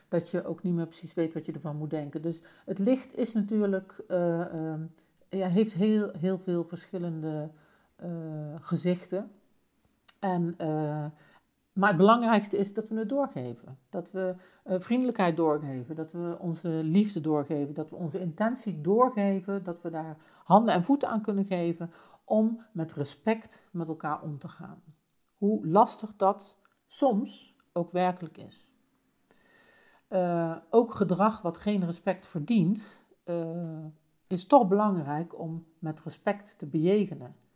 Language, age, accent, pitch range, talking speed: Dutch, 50-69, Dutch, 160-200 Hz, 150 wpm